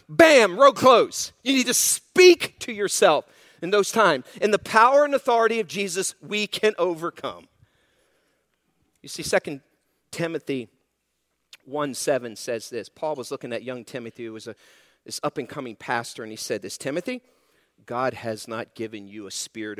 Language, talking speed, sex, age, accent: English, 160 wpm, male, 50-69, American